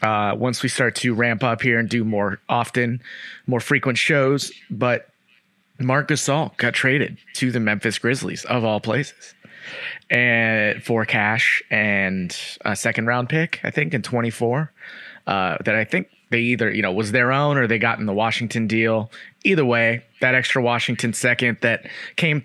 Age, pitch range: 30-49, 115-145 Hz